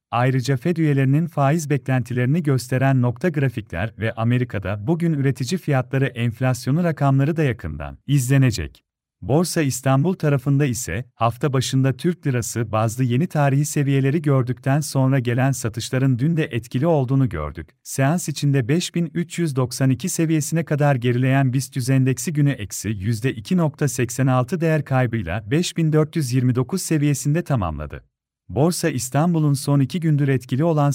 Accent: native